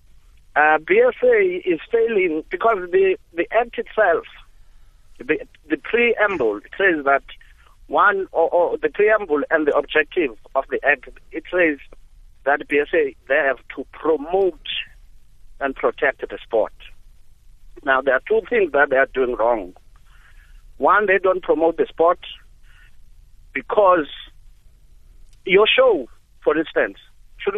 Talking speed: 130 wpm